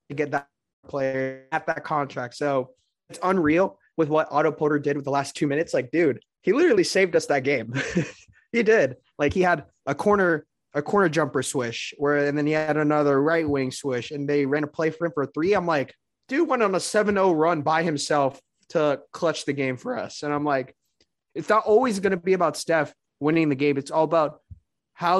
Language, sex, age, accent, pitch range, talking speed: English, male, 20-39, American, 140-170 Hz, 215 wpm